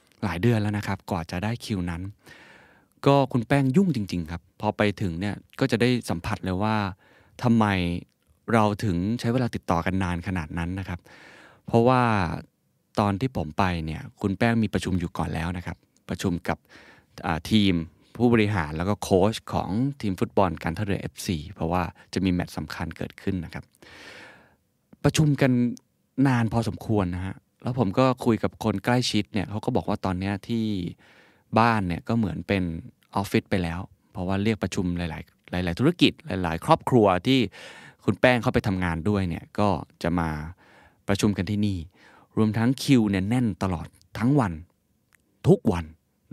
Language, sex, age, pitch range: Thai, male, 20-39, 90-115 Hz